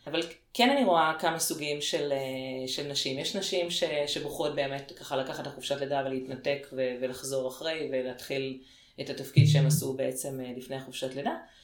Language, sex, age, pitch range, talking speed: Hebrew, female, 30-49, 135-170 Hz, 160 wpm